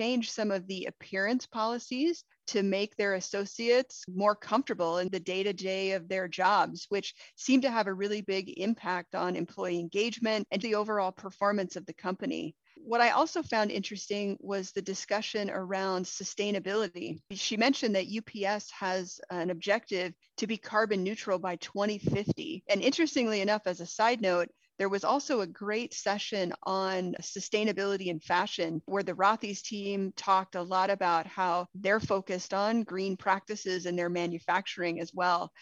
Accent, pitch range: American, 185-215 Hz